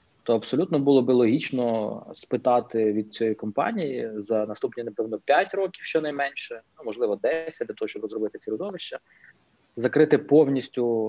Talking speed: 140 wpm